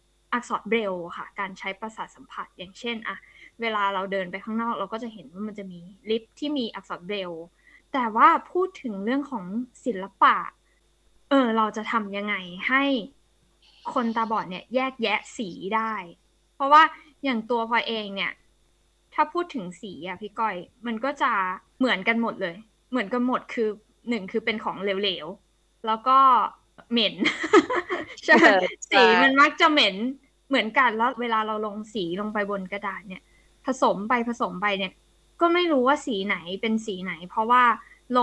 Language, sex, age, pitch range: Thai, female, 20-39, 200-260 Hz